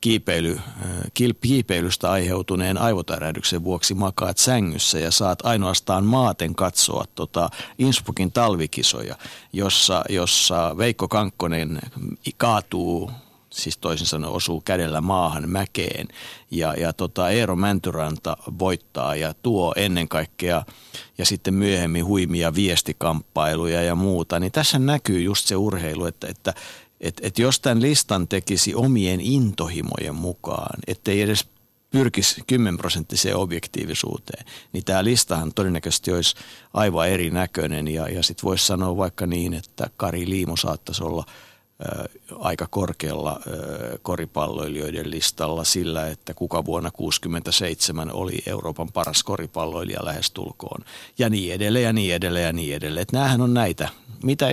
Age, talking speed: 50-69, 125 wpm